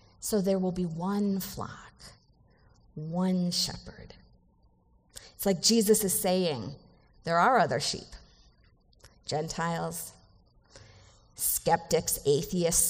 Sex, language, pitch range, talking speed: female, English, 170-220 Hz, 95 wpm